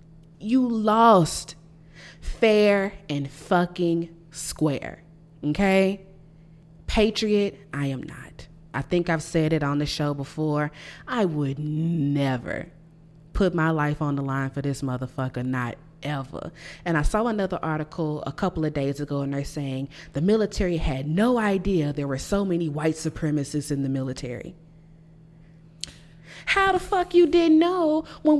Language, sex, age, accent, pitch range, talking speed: English, female, 20-39, American, 160-245 Hz, 145 wpm